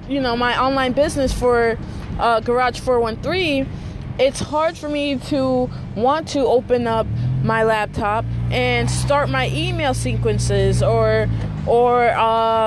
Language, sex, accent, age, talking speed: English, female, American, 20-39, 130 wpm